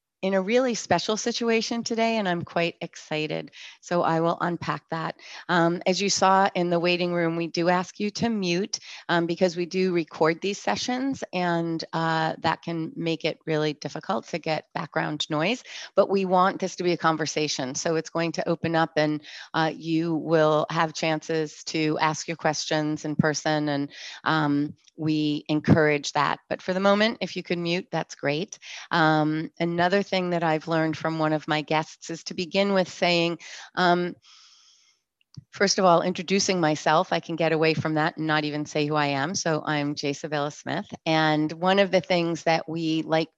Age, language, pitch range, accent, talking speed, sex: 30-49, English, 155-185 Hz, American, 185 wpm, female